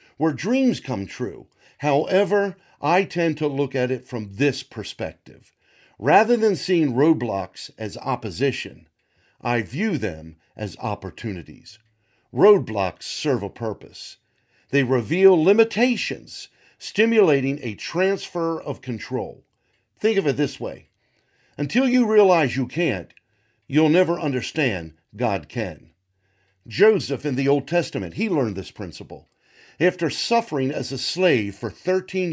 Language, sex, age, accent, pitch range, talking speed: English, male, 50-69, American, 110-165 Hz, 125 wpm